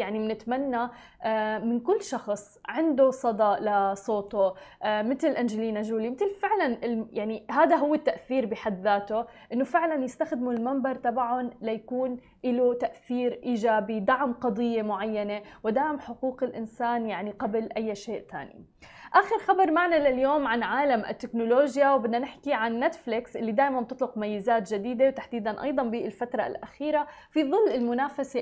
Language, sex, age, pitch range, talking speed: Arabic, female, 20-39, 230-290 Hz, 130 wpm